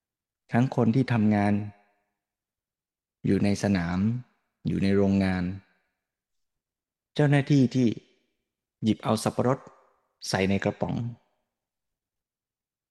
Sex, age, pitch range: male, 20-39, 105-125 Hz